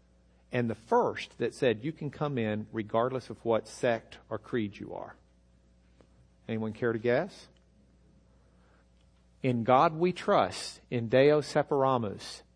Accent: American